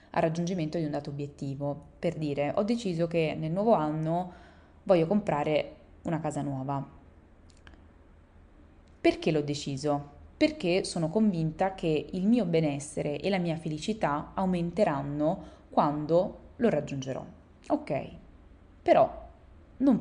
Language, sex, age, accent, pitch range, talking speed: Italian, female, 20-39, native, 150-180 Hz, 115 wpm